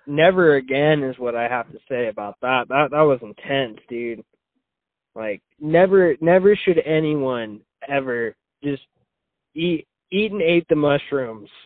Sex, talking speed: male, 145 wpm